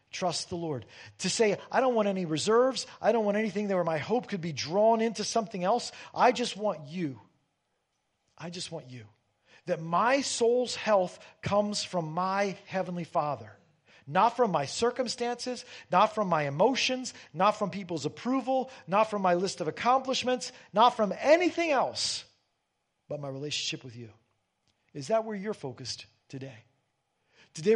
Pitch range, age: 155-225 Hz, 40-59